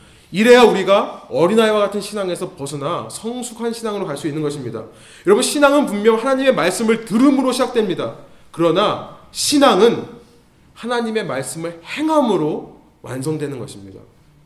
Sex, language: male, Korean